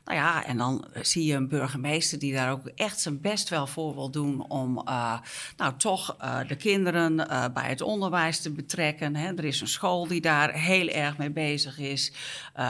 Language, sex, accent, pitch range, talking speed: Dutch, female, Dutch, 145-175 Hz, 200 wpm